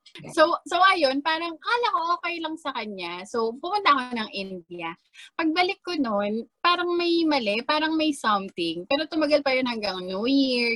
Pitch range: 230-335 Hz